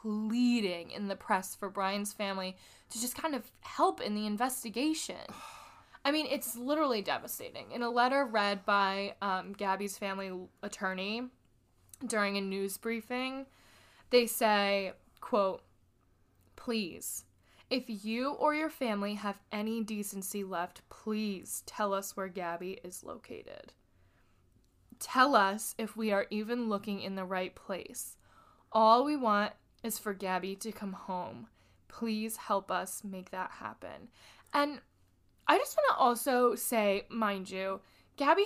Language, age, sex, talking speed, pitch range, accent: English, 10-29, female, 140 wpm, 195-245 Hz, American